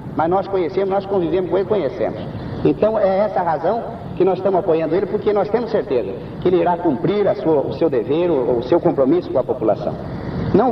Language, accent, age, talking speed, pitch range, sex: Portuguese, Brazilian, 50-69, 215 wpm, 175-250 Hz, male